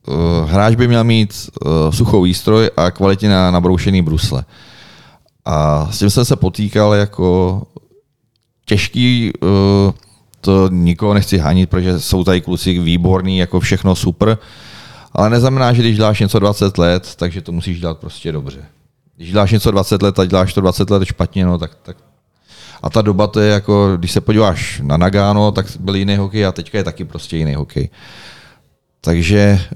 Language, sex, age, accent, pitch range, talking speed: Czech, male, 30-49, native, 85-105 Hz, 170 wpm